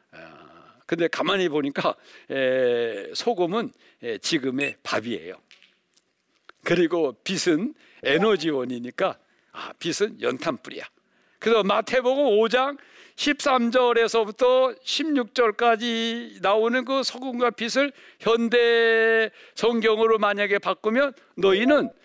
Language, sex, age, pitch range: Korean, male, 60-79, 205-290 Hz